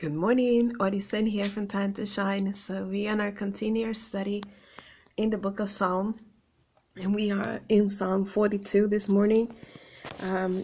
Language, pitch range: English, 185-205 Hz